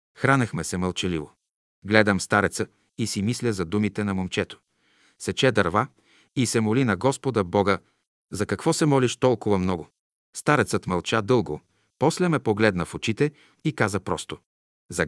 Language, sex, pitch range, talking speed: Bulgarian, male, 95-120 Hz, 150 wpm